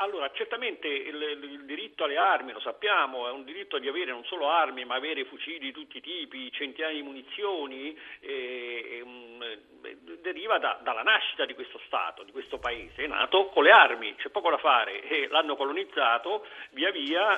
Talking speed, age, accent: 185 wpm, 50-69, native